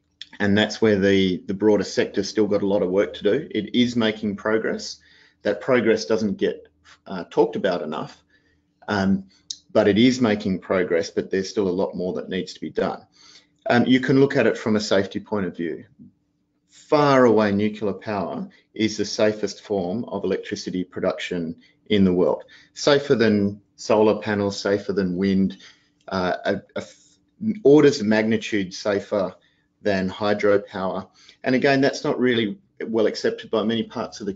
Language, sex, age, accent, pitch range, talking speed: English, male, 30-49, Australian, 100-115 Hz, 170 wpm